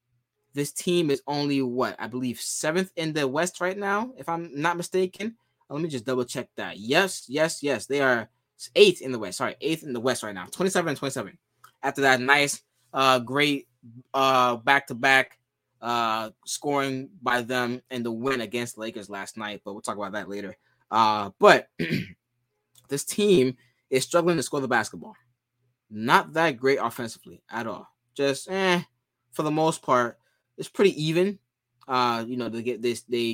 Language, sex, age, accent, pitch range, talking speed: English, male, 20-39, American, 120-145 Hz, 170 wpm